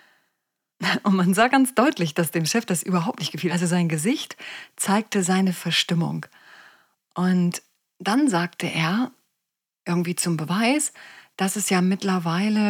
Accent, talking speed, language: German, 135 wpm, German